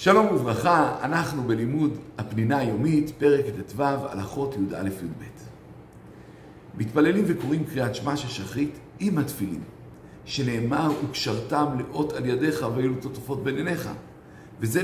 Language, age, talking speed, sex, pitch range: Hebrew, 60-79, 115 wpm, male, 120-160 Hz